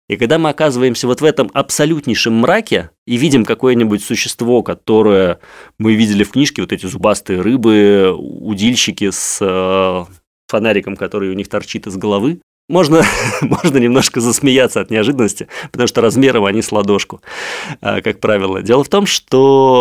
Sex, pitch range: male, 100-135 Hz